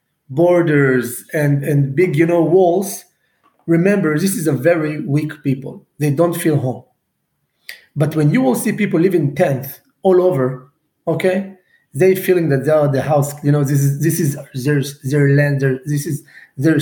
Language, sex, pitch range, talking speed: English, male, 150-205 Hz, 175 wpm